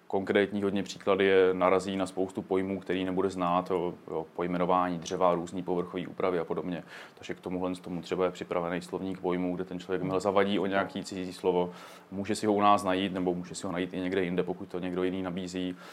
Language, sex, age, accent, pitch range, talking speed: Czech, male, 20-39, native, 90-100 Hz, 205 wpm